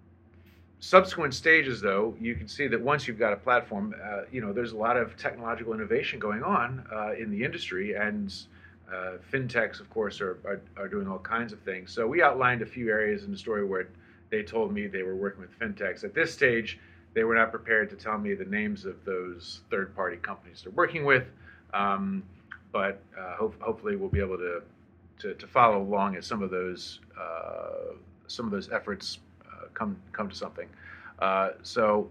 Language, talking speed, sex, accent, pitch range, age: English, 195 wpm, male, American, 95-115 Hz, 40-59